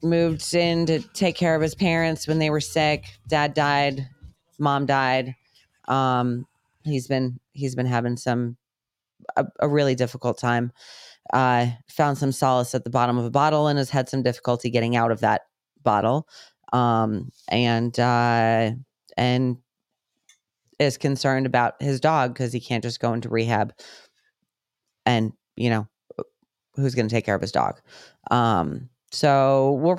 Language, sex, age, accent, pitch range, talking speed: English, female, 30-49, American, 120-140 Hz, 160 wpm